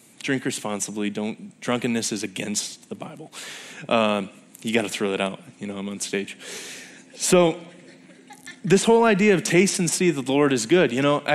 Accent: American